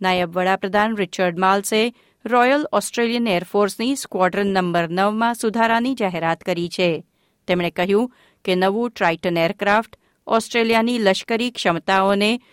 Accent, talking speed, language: native, 110 wpm, Gujarati